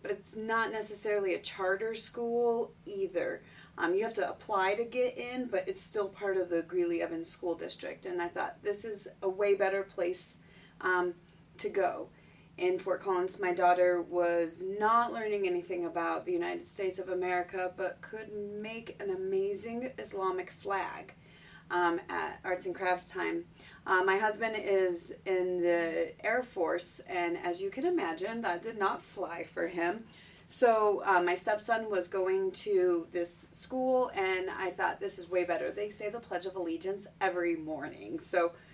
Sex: female